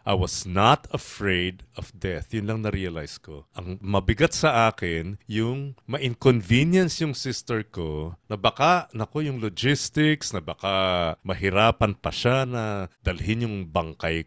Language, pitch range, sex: Filipino, 95-130 Hz, male